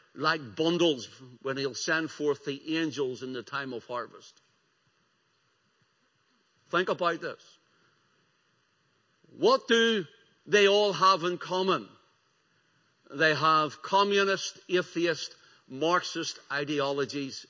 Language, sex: English, male